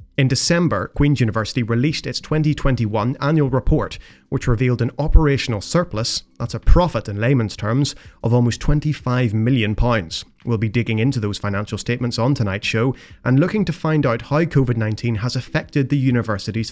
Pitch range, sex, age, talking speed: 110-135 Hz, male, 30-49, 160 wpm